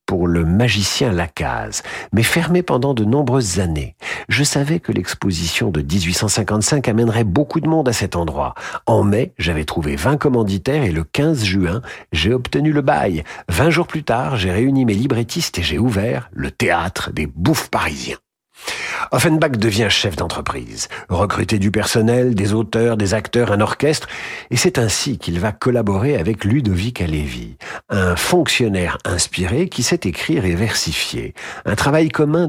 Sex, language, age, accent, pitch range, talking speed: male, French, 50-69, French, 90-130 Hz, 160 wpm